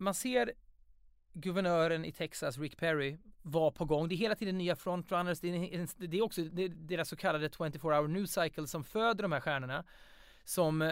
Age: 30-49